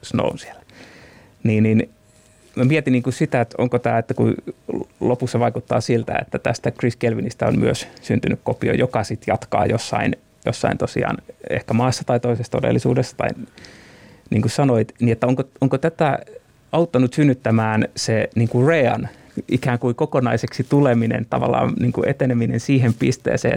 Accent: native